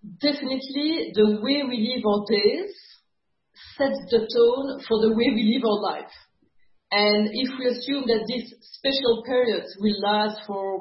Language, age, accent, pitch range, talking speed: English, 40-59, French, 210-265 Hz, 155 wpm